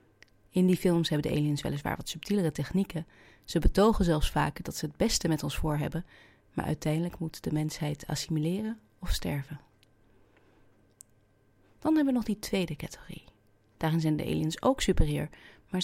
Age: 30-49